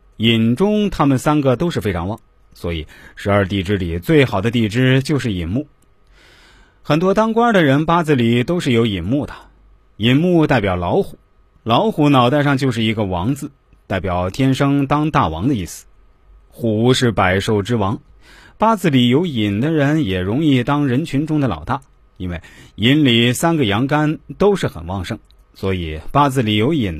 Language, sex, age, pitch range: Chinese, male, 30-49, 100-145 Hz